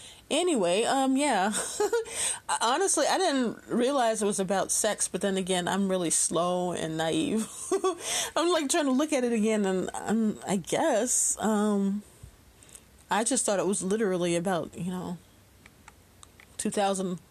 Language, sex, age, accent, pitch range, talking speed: English, female, 30-49, American, 180-240 Hz, 140 wpm